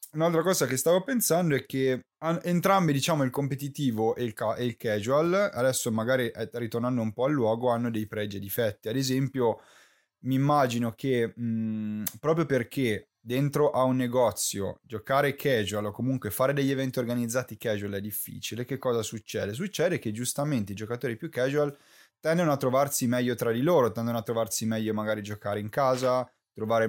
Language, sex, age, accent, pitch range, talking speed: Italian, male, 20-39, native, 110-135 Hz, 165 wpm